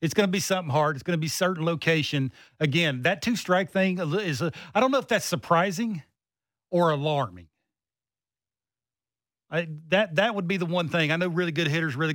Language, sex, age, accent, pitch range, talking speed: English, male, 40-59, American, 150-205 Hz, 195 wpm